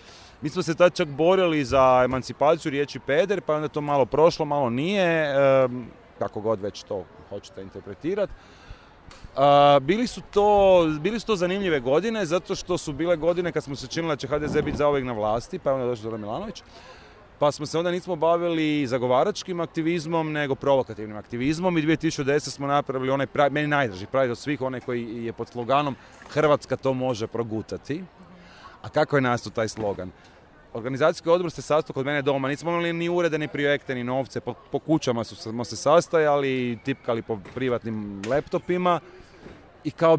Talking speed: 175 wpm